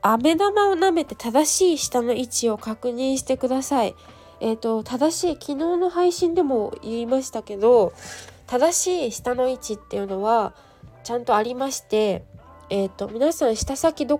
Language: Japanese